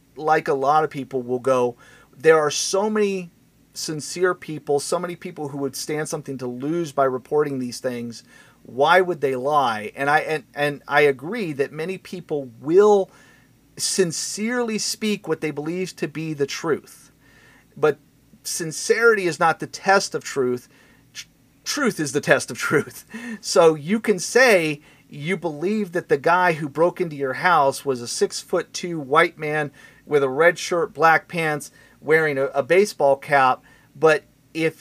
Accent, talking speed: American, 170 wpm